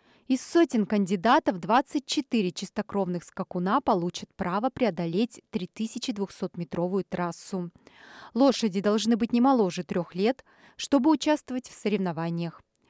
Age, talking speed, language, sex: 30-49, 100 wpm, Russian, female